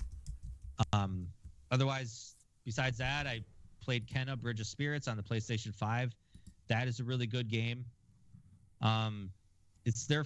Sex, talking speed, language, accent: male, 135 wpm, English, American